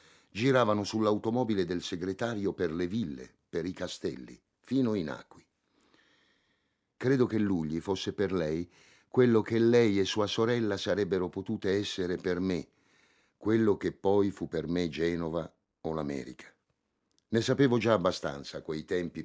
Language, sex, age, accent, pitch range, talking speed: Italian, male, 50-69, native, 80-105 Hz, 145 wpm